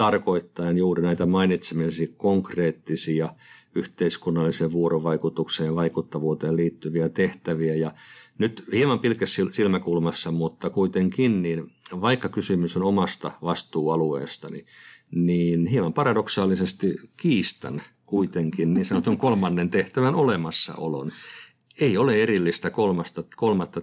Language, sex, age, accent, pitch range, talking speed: Finnish, male, 50-69, native, 85-105 Hz, 100 wpm